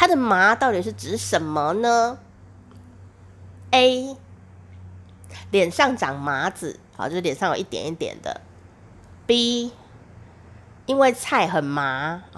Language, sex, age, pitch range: Chinese, female, 30-49, 165-270 Hz